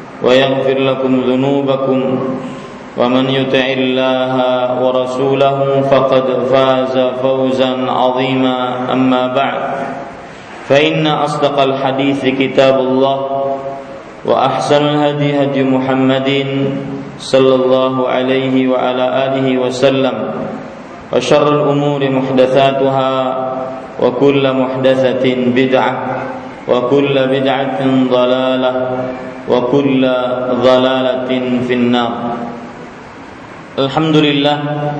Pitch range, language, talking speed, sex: 130-140 Hz, Malay, 70 wpm, male